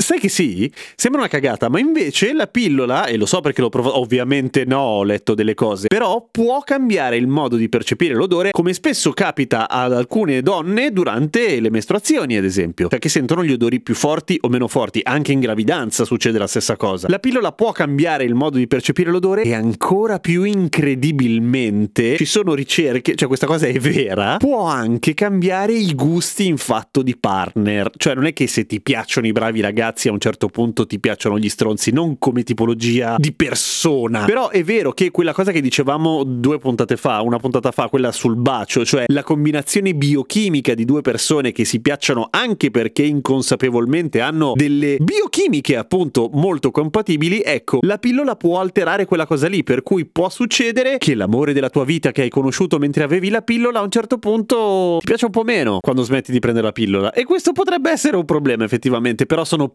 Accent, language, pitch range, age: native, Italian, 125-185 Hz, 30-49